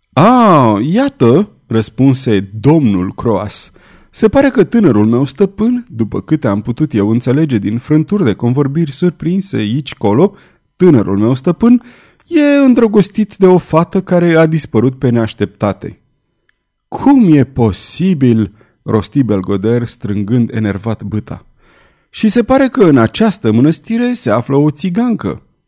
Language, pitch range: Romanian, 110-180 Hz